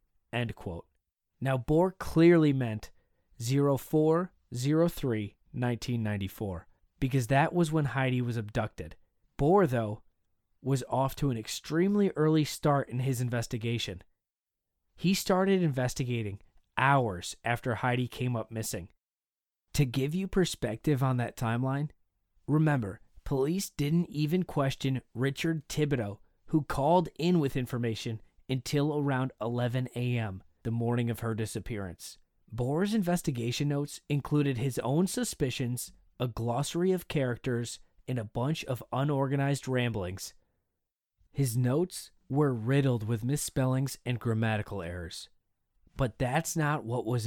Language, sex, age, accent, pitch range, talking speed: English, male, 20-39, American, 110-145 Hz, 120 wpm